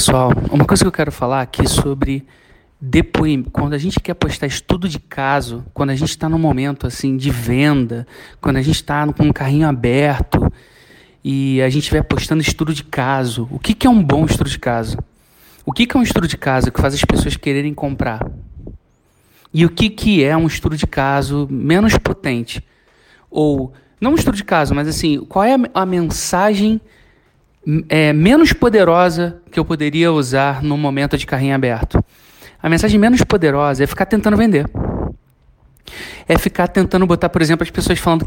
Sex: male